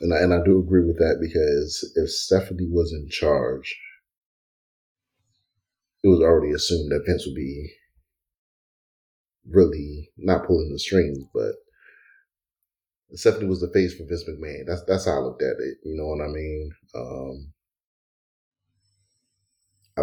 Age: 30-49